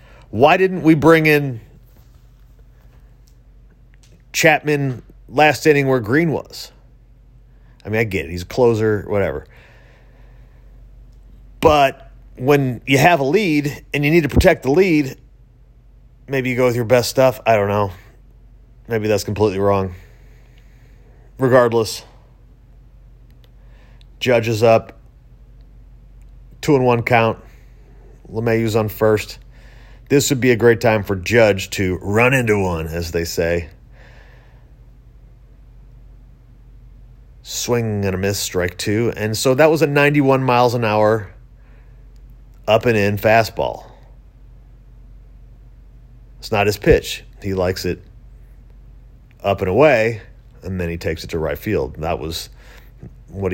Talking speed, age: 125 wpm, 30-49